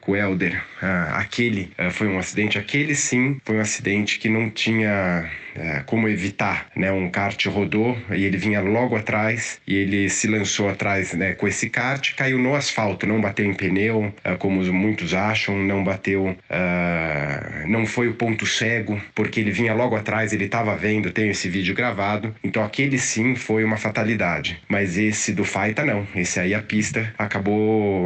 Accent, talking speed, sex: Brazilian, 175 wpm, male